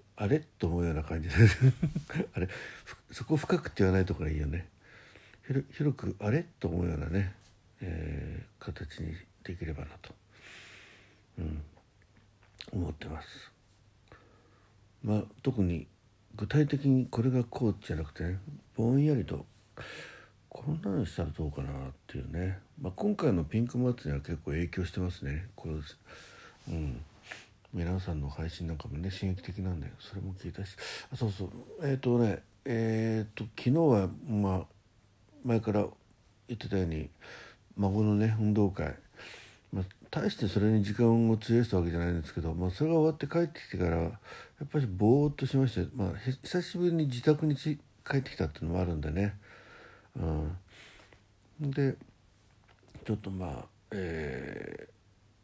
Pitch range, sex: 90-120 Hz, male